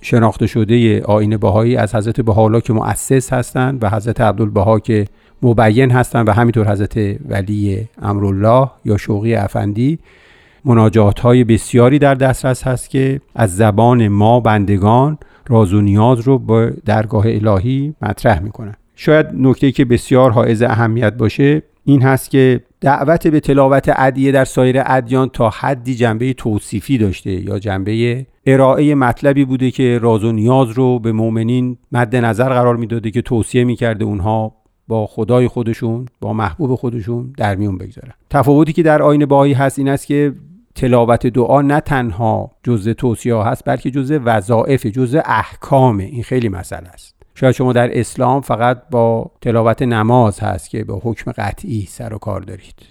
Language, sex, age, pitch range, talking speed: Persian, male, 50-69, 110-130 Hz, 150 wpm